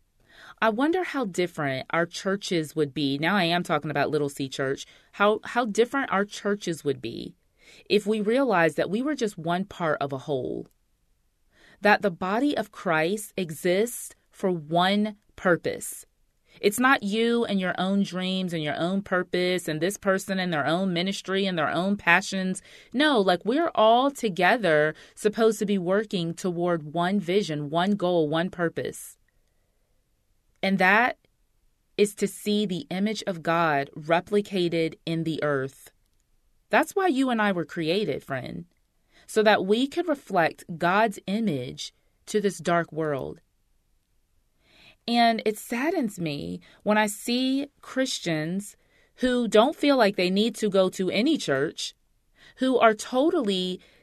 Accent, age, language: American, 30-49, English